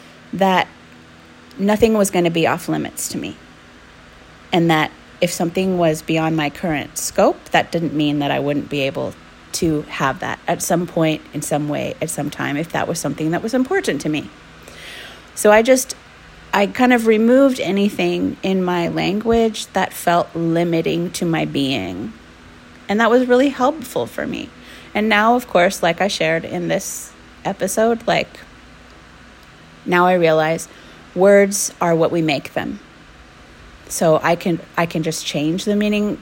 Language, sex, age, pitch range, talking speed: English, female, 30-49, 155-210 Hz, 165 wpm